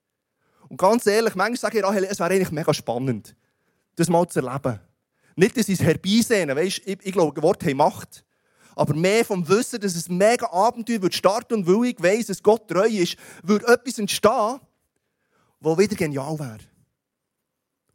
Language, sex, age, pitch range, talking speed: German, male, 30-49, 160-210 Hz, 180 wpm